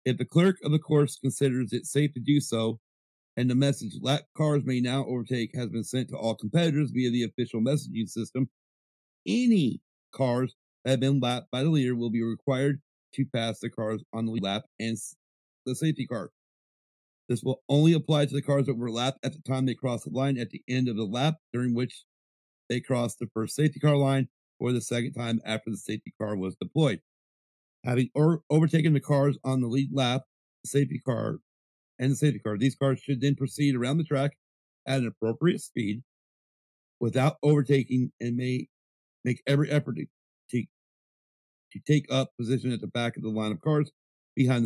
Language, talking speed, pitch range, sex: English, 195 wpm, 115-140 Hz, male